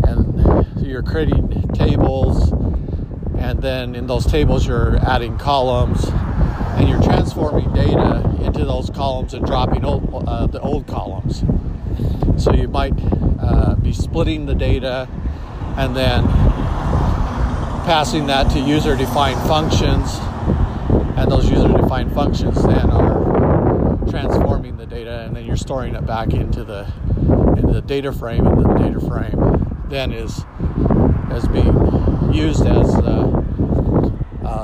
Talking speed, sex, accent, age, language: 125 wpm, male, American, 50-69, English